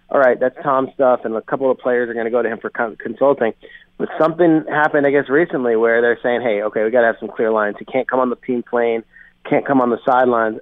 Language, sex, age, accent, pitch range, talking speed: English, male, 30-49, American, 120-140 Hz, 270 wpm